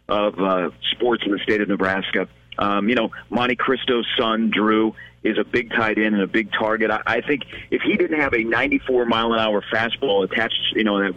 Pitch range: 105-135 Hz